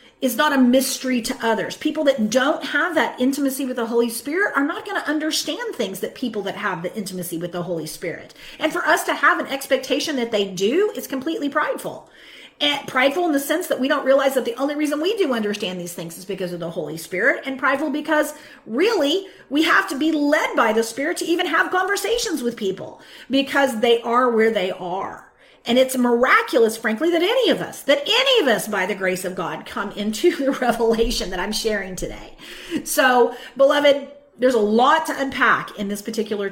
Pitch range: 215-295 Hz